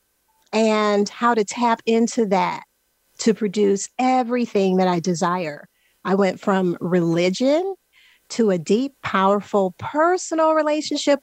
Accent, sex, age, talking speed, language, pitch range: American, female, 40-59, 120 wpm, English, 195-260 Hz